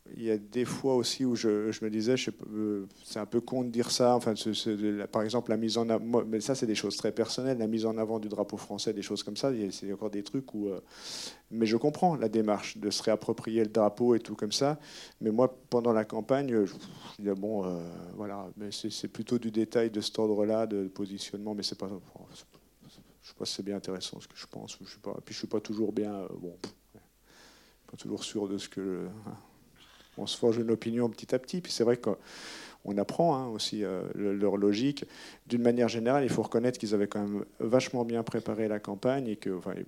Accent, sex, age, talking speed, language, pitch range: French, male, 40-59, 245 wpm, French, 105-120 Hz